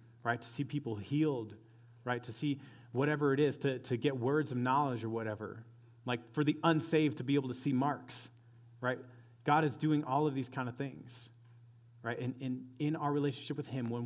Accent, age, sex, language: American, 30-49, male, English